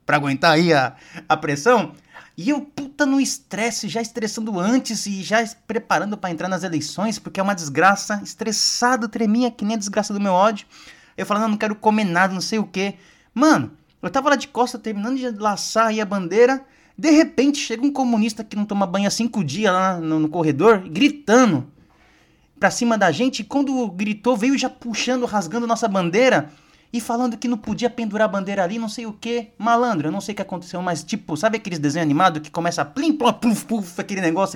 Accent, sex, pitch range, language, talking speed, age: Brazilian, male, 185-245 Hz, Portuguese, 210 wpm, 20-39